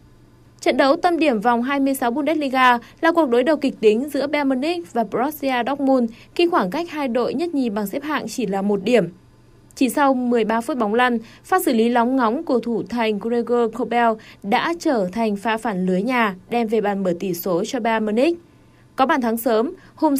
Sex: female